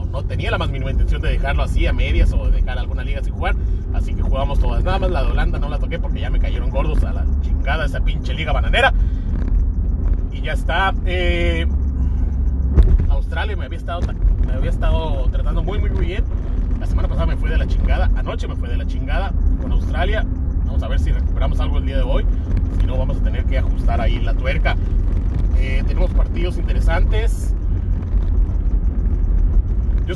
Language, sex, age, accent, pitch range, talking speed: Spanish, male, 30-49, Mexican, 75-85 Hz, 195 wpm